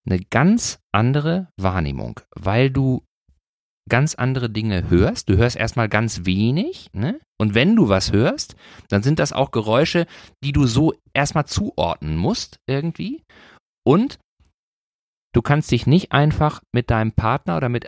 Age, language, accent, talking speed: 40-59, German, German, 150 wpm